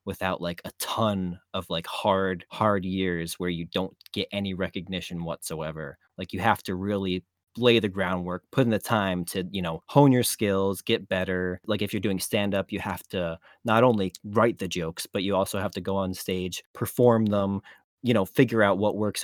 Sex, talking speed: male, 205 wpm